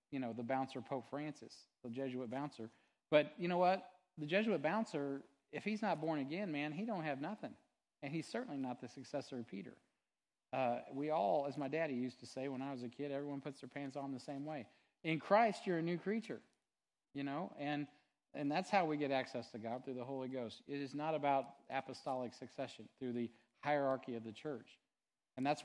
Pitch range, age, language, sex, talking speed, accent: 120-150 Hz, 40-59, English, male, 215 wpm, American